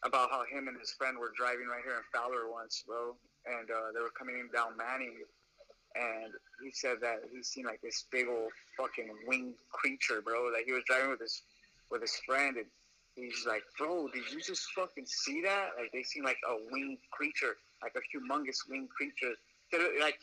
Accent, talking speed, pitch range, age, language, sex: American, 205 wpm, 120-150 Hz, 20-39, English, male